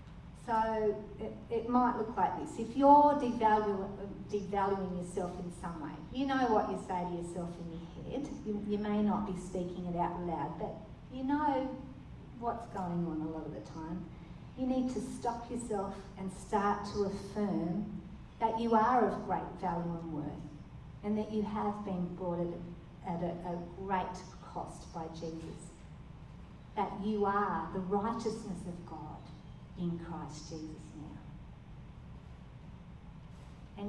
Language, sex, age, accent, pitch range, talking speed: English, female, 40-59, Australian, 175-220 Hz, 155 wpm